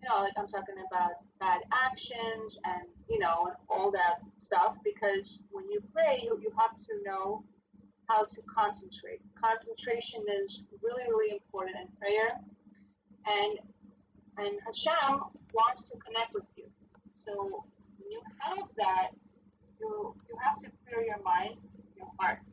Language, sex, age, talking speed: English, female, 30-49, 145 wpm